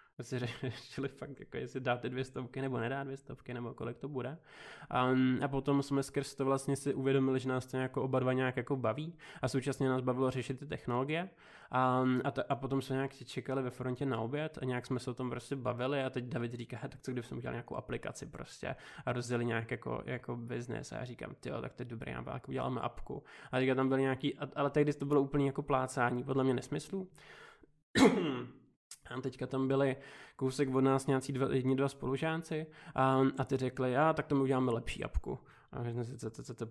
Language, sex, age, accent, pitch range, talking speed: Czech, male, 20-39, native, 125-135 Hz, 215 wpm